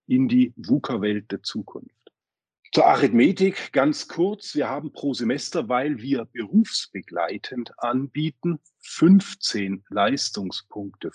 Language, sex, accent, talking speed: German, male, German, 100 wpm